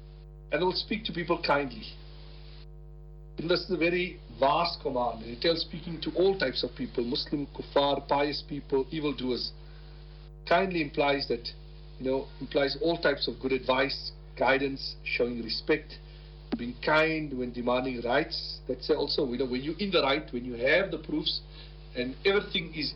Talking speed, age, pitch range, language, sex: 165 wpm, 50-69, 135-155 Hz, English, male